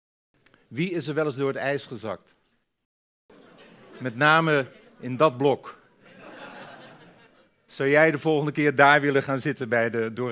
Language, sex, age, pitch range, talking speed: Dutch, male, 50-69, 135-160 Hz, 150 wpm